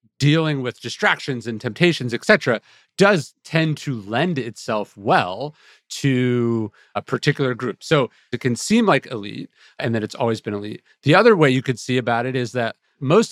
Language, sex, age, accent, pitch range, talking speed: English, male, 40-59, American, 115-145 Hz, 180 wpm